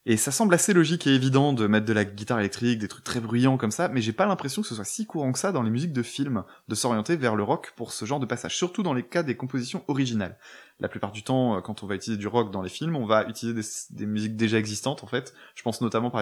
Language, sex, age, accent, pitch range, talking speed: French, male, 20-39, French, 105-135 Hz, 290 wpm